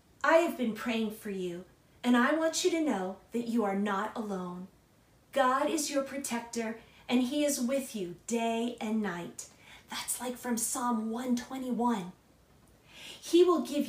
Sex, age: female, 40-59